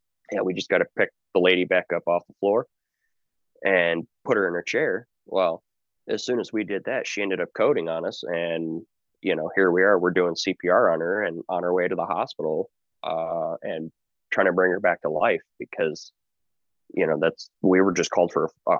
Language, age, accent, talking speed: English, 20-39, American, 225 wpm